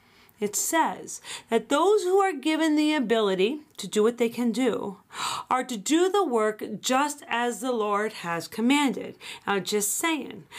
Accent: American